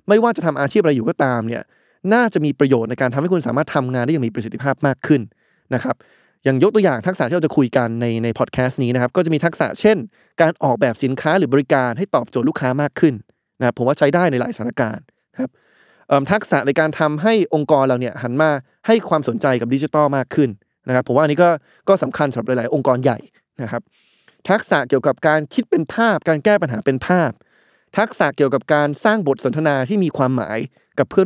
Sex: male